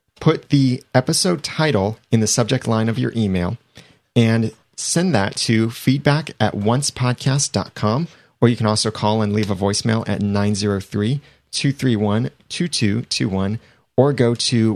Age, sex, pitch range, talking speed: 30-49, male, 100-125 Hz, 130 wpm